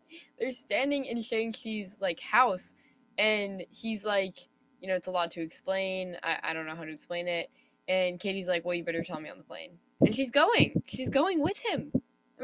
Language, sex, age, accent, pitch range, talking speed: English, female, 10-29, American, 170-240 Hz, 205 wpm